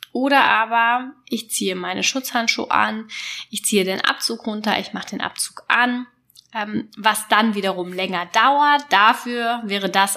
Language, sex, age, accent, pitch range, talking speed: German, female, 10-29, German, 195-250 Hz, 150 wpm